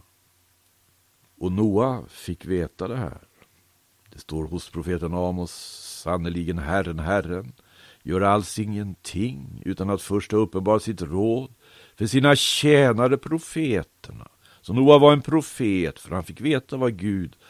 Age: 60-79